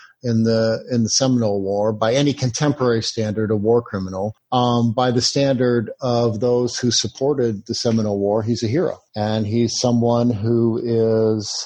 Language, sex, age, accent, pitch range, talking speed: English, male, 50-69, American, 110-130 Hz, 165 wpm